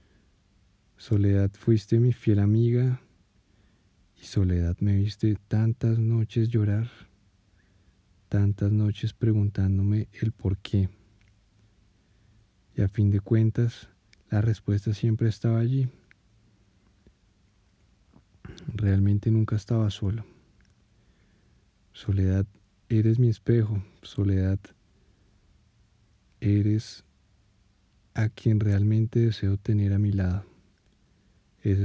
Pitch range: 100-110 Hz